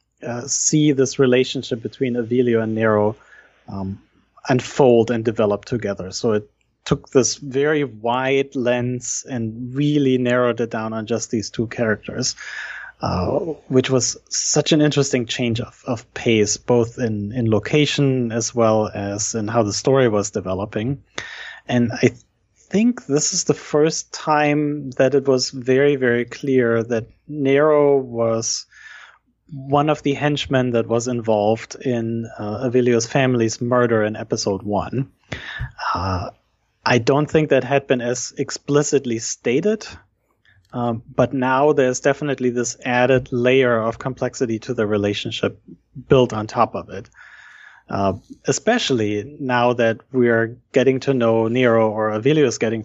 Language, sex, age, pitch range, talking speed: English, male, 30-49, 110-135 Hz, 145 wpm